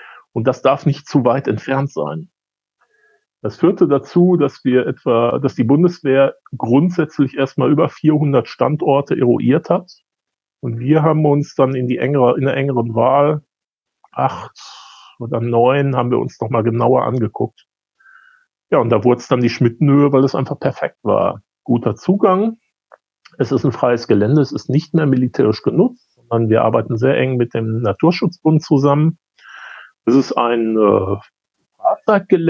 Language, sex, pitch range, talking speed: German, male, 120-155 Hz, 155 wpm